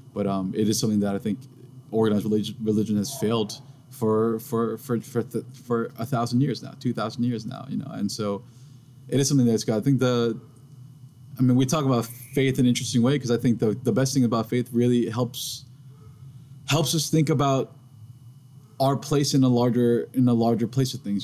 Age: 20-39